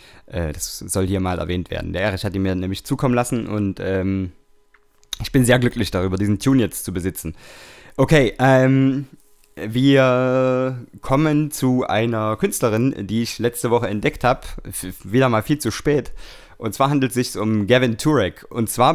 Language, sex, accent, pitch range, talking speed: German, male, German, 105-135 Hz, 170 wpm